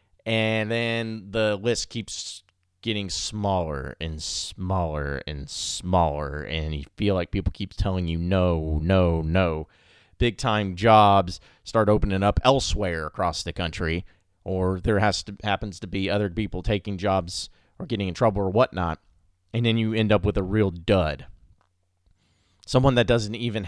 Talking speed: 155 wpm